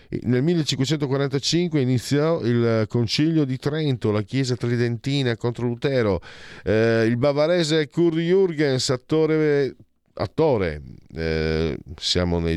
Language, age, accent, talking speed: Italian, 50-69, native, 105 wpm